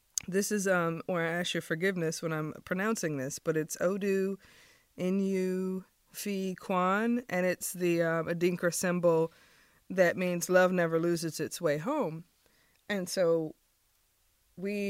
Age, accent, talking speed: 20-39, American, 140 wpm